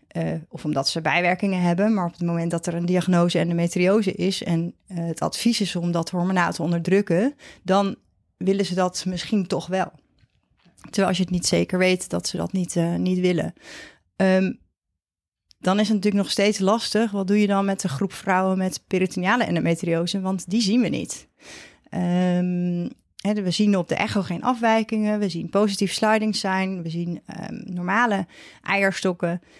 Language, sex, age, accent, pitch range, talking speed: Dutch, female, 30-49, Dutch, 175-205 Hz, 180 wpm